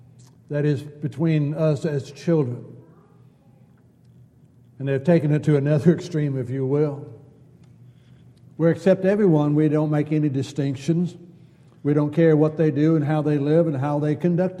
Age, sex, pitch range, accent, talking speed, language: 60-79, male, 140-175 Hz, American, 155 wpm, English